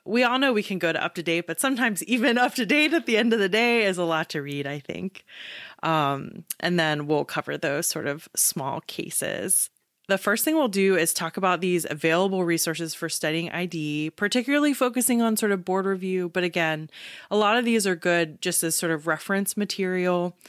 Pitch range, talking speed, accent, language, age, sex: 160-215 Hz, 210 wpm, American, English, 30-49, female